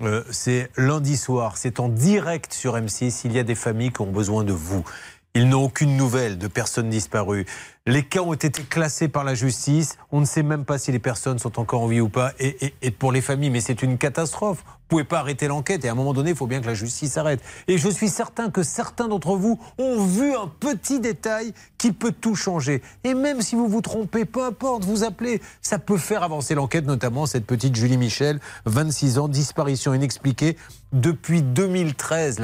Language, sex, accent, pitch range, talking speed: French, male, French, 125-170 Hz, 220 wpm